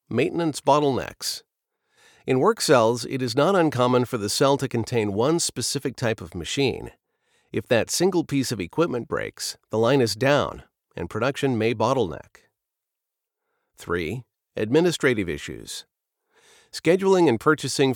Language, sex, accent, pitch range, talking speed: English, male, American, 115-155 Hz, 135 wpm